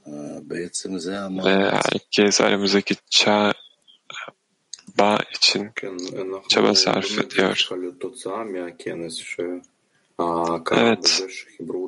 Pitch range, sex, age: 90-105 Hz, male, 20-39